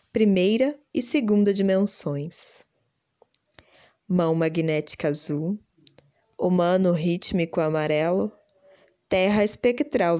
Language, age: Portuguese, 20-39